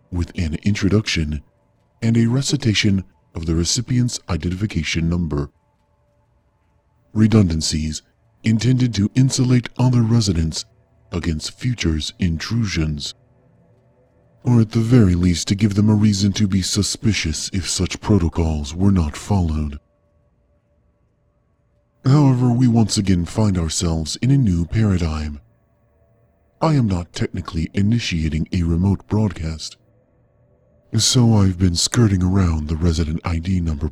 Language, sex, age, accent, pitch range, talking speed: English, female, 40-59, American, 85-115 Hz, 115 wpm